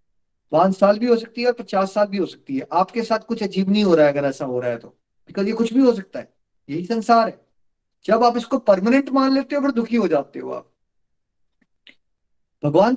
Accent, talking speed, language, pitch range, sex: native, 235 wpm, Hindi, 175-235 Hz, male